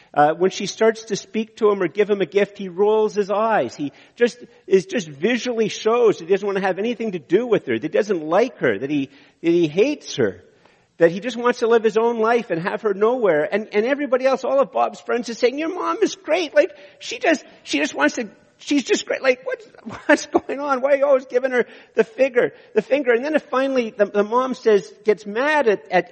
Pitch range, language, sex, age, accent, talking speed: 215-295 Hz, English, male, 50-69, American, 250 wpm